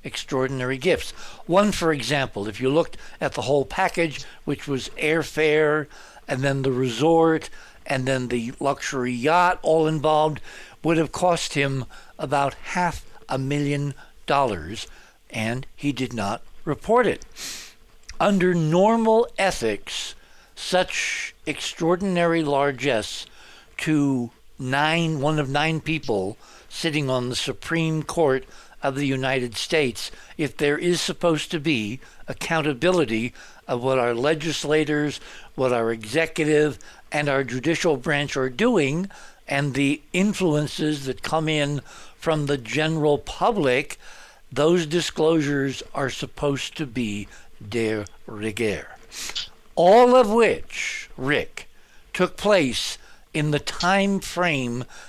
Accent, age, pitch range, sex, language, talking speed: American, 60-79, 130-165 Hz, male, English, 120 wpm